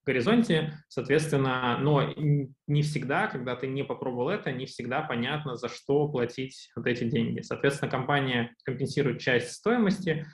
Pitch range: 125-155 Hz